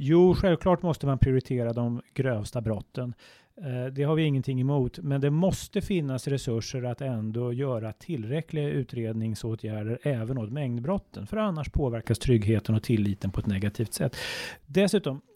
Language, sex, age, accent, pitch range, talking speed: Swedish, male, 30-49, native, 120-155 Hz, 145 wpm